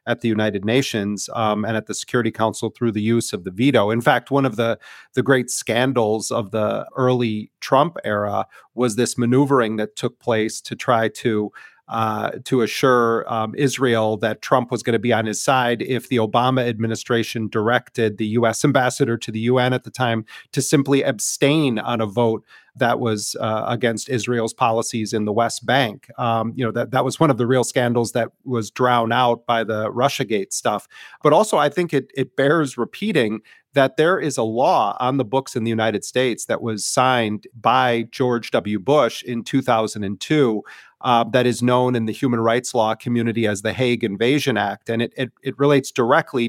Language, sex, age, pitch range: English, male, 40-59, 110-130 Hz